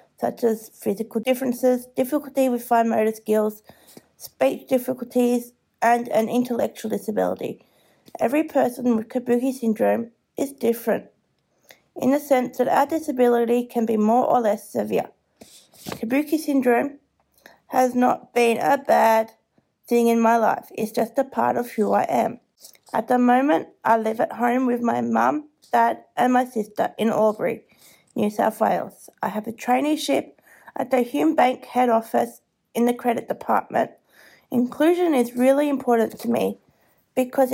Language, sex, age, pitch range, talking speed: English, female, 30-49, 230-265 Hz, 150 wpm